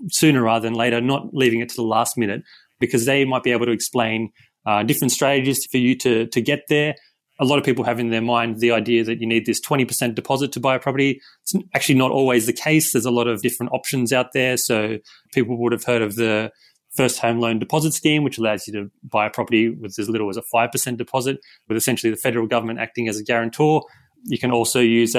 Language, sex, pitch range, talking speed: English, male, 115-140 Hz, 245 wpm